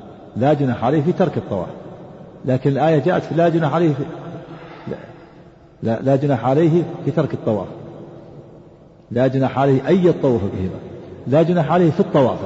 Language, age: Arabic, 40-59